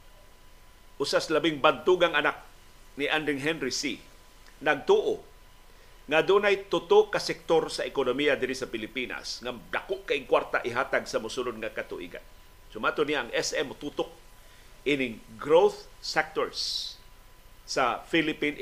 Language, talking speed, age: Filipino, 120 wpm, 50-69